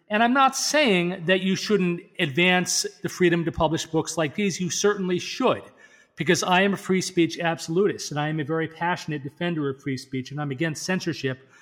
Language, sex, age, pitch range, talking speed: English, male, 40-59, 140-170 Hz, 200 wpm